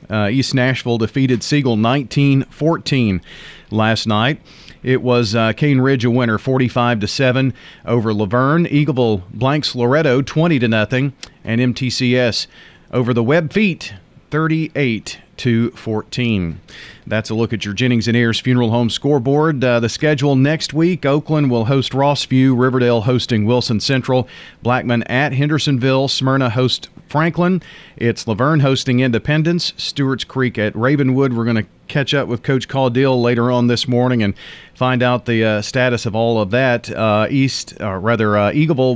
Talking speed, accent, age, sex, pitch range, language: 160 wpm, American, 40-59, male, 115-140 Hz, English